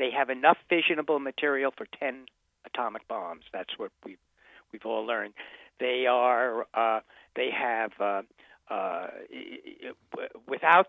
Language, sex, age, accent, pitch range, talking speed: English, male, 60-79, American, 120-150 Hz, 125 wpm